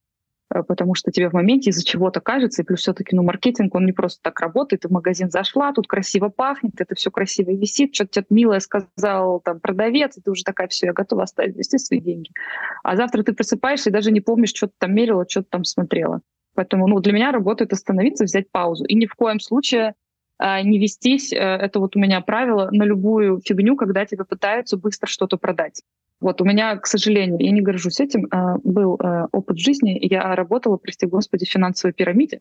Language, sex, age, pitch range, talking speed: Russian, female, 20-39, 185-225 Hz, 205 wpm